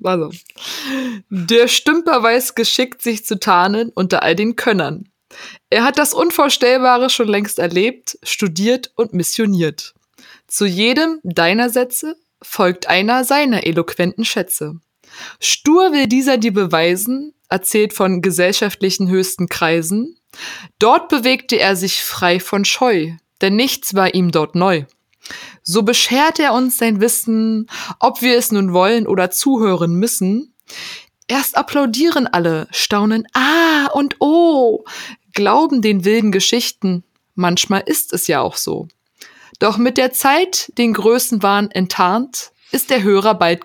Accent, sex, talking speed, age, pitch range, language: German, female, 130 wpm, 20-39, 185-255 Hz, German